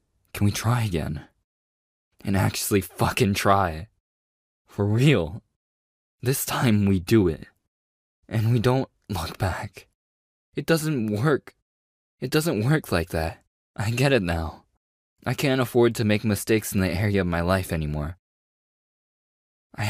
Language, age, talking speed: English, 20-39, 140 wpm